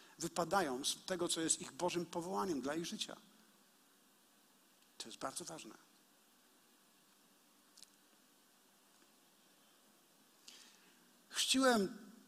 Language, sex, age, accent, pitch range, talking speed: Polish, male, 50-69, native, 180-240 Hz, 80 wpm